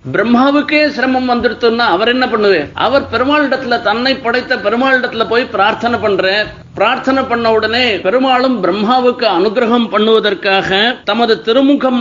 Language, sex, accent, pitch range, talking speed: Tamil, male, native, 225-265 Hz, 120 wpm